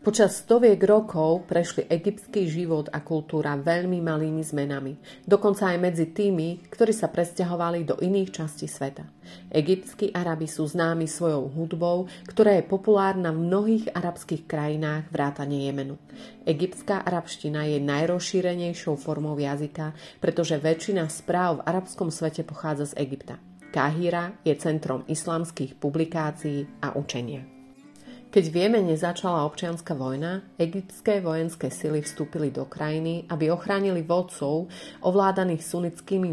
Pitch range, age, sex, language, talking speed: 150-180 Hz, 30-49, female, Slovak, 125 wpm